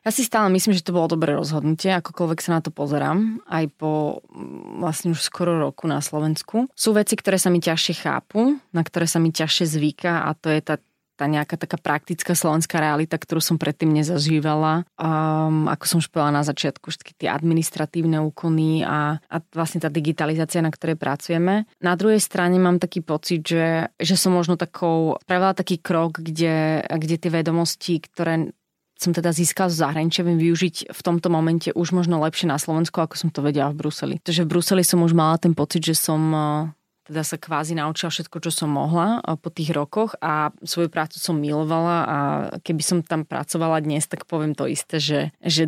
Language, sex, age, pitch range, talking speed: Slovak, female, 20-39, 155-175 Hz, 190 wpm